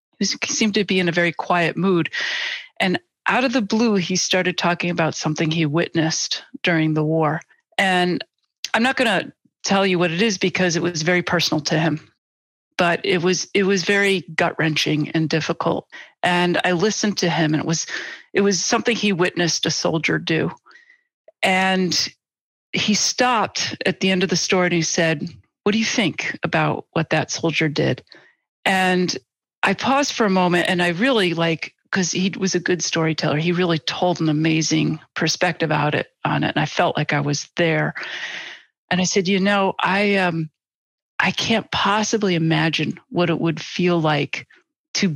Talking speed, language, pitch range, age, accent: 180 wpm, English, 160-195 Hz, 40-59, American